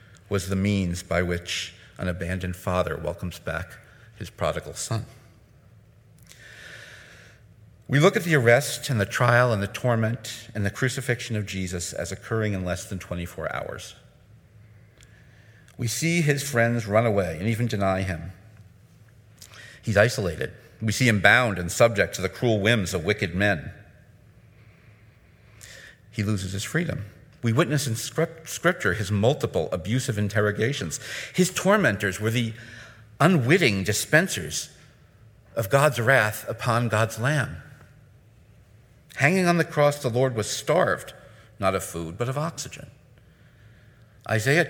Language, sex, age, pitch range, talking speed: English, male, 50-69, 105-125 Hz, 135 wpm